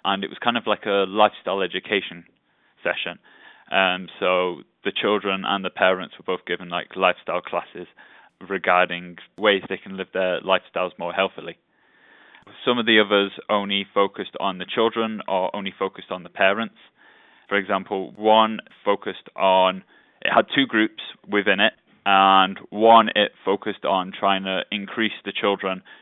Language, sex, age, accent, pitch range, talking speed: English, male, 20-39, British, 95-105 Hz, 155 wpm